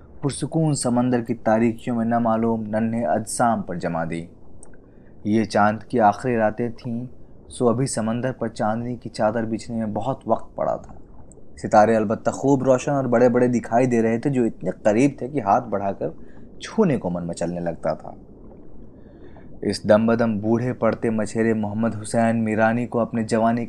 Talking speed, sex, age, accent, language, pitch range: 165 wpm, male, 20-39, native, Hindi, 105-120 Hz